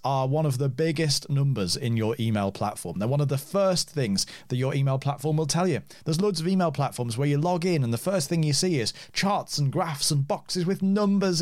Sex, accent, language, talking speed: male, British, English, 240 wpm